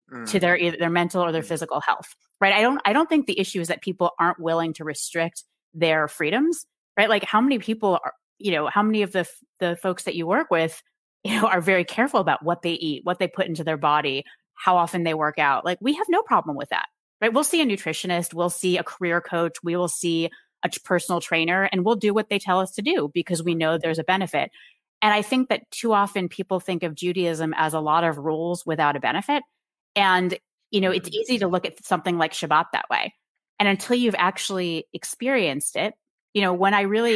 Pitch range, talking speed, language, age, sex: 165-205 Hz, 235 wpm, English, 30-49, female